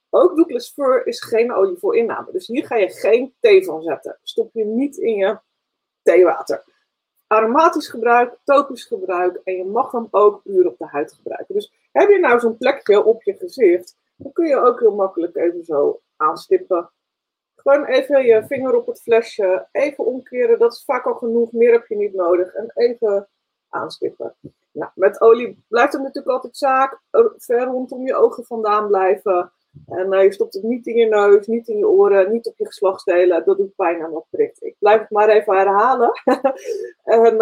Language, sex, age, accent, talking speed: Dutch, female, 30-49, Dutch, 190 wpm